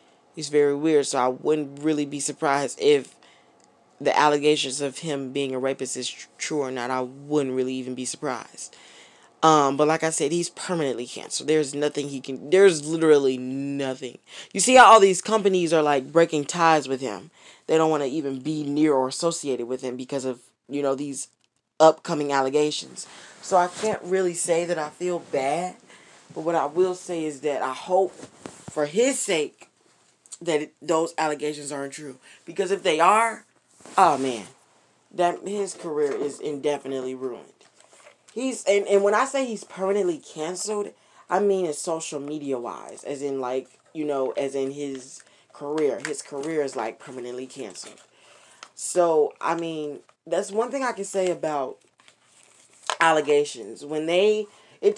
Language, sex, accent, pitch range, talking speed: English, female, American, 140-185 Hz, 170 wpm